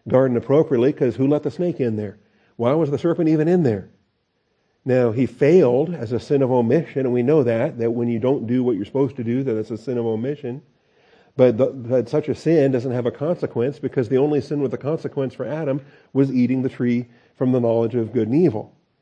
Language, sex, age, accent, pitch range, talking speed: English, male, 40-59, American, 115-135 Hz, 225 wpm